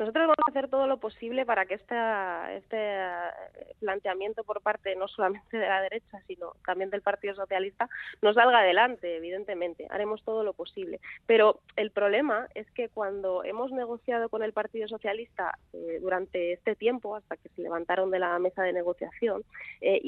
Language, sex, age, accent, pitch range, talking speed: Spanish, female, 20-39, Spanish, 185-220 Hz, 175 wpm